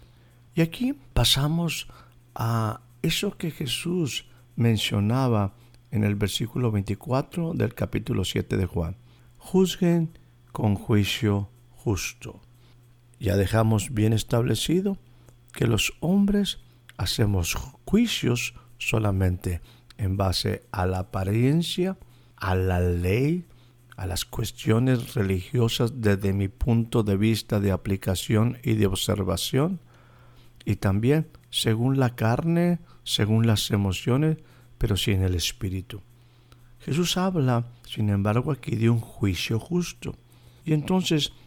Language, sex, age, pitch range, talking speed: Spanish, male, 50-69, 105-130 Hz, 110 wpm